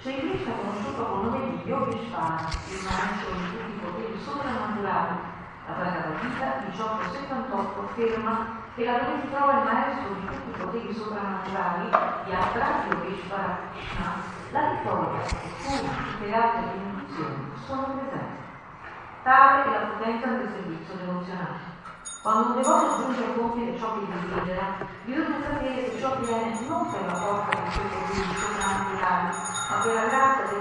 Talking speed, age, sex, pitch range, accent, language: 160 wpm, 40-59, female, 205-265 Hz, Italian, English